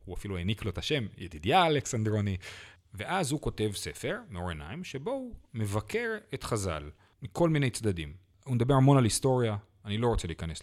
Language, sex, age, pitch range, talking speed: Hebrew, male, 40-59, 95-145 Hz, 175 wpm